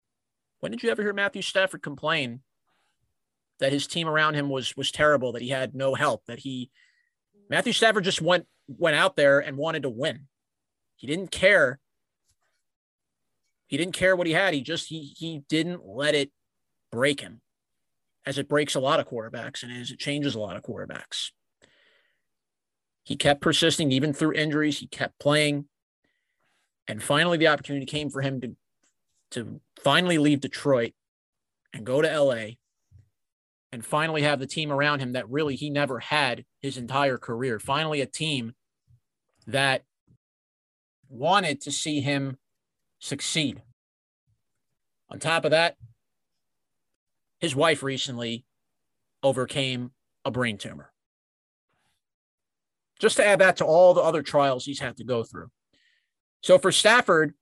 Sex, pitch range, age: male, 125-160 Hz, 30-49